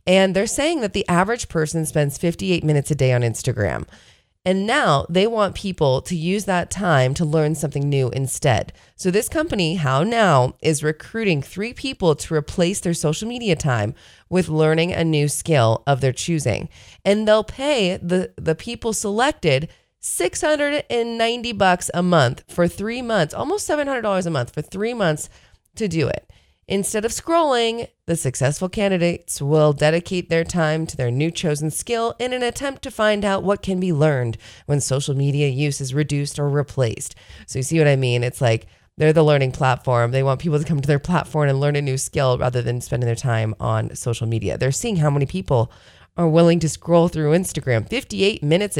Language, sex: English, female